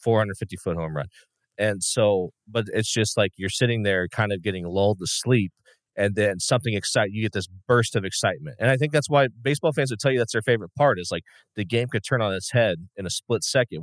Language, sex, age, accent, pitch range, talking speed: English, male, 40-59, American, 100-125 Hz, 245 wpm